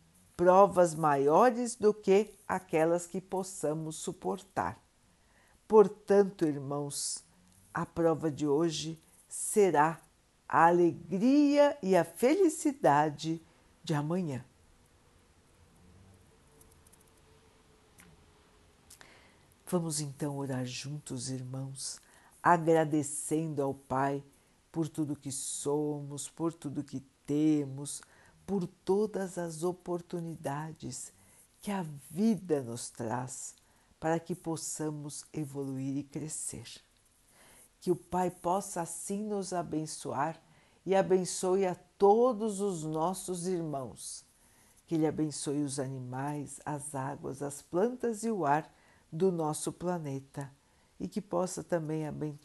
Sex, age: female, 60-79